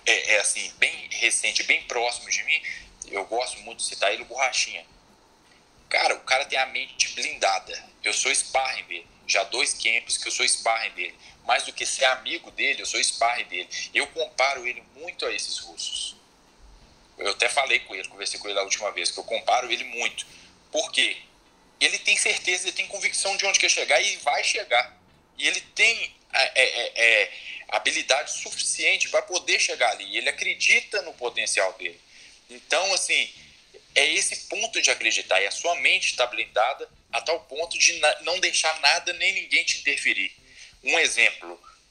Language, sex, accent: Portuguese, male, Brazilian